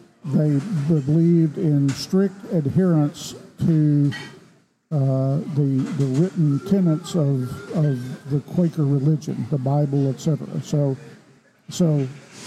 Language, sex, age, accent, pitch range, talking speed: English, male, 50-69, American, 140-170 Hz, 100 wpm